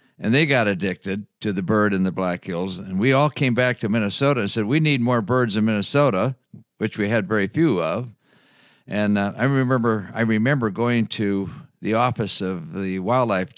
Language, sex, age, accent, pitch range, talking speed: English, male, 60-79, American, 95-130 Hz, 200 wpm